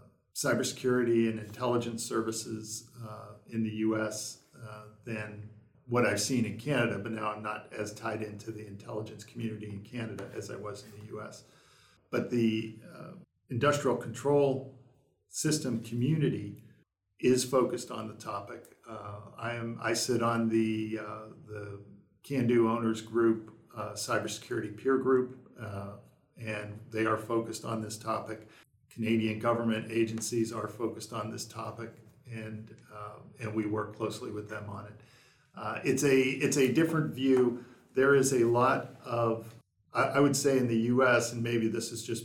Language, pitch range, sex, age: English, 110-120 Hz, male, 50-69